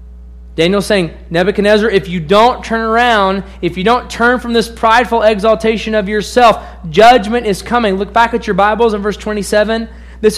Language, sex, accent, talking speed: English, male, American, 175 wpm